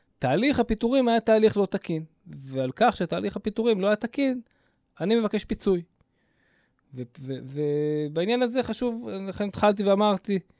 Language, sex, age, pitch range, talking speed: Hebrew, male, 20-39, 125-185 Hz, 135 wpm